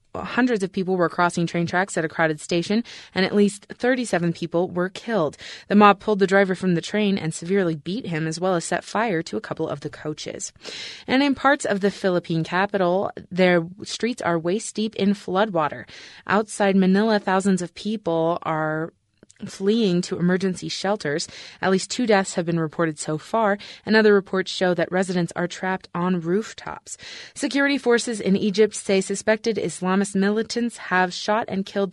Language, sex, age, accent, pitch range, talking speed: English, female, 20-39, American, 170-210 Hz, 180 wpm